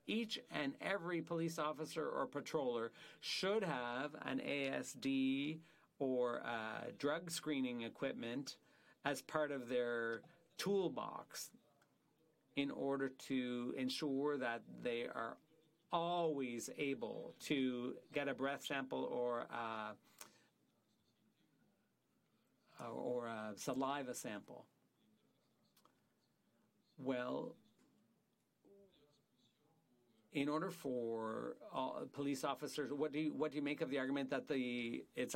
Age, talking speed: 50-69, 95 wpm